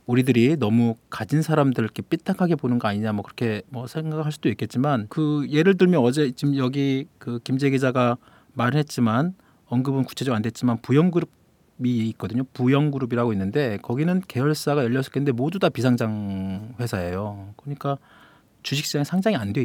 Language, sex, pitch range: Korean, male, 120-165 Hz